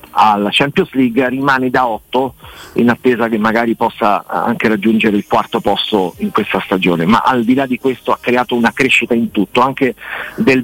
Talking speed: 185 wpm